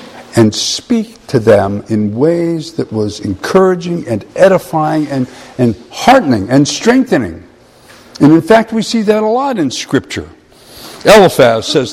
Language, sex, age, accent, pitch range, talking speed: English, male, 60-79, American, 125-185 Hz, 140 wpm